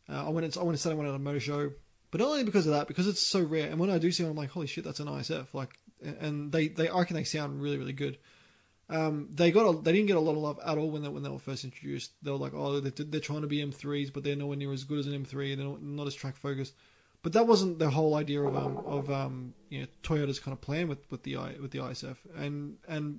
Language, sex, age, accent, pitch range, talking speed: English, male, 20-39, Australian, 140-170 Hz, 305 wpm